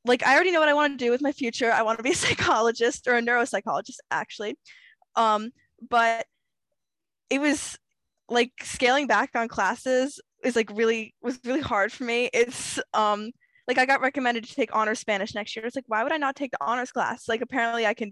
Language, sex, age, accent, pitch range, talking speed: English, female, 10-29, American, 215-265 Hz, 215 wpm